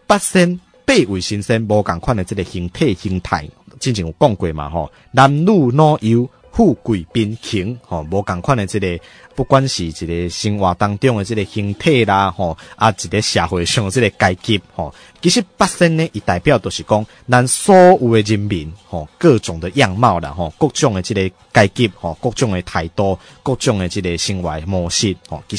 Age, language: 20-39, Chinese